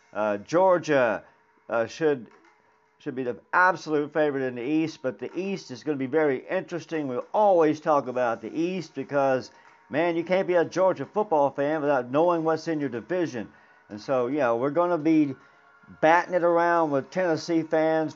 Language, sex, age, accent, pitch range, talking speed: English, male, 50-69, American, 150-185 Hz, 185 wpm